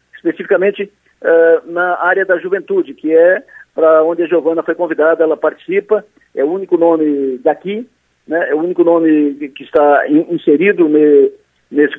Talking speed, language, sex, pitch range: 160 wpm, Portuguese, male, 160-215 Hz